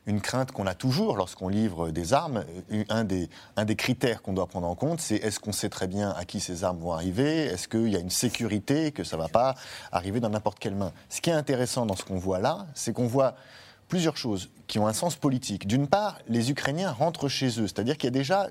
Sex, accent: male, French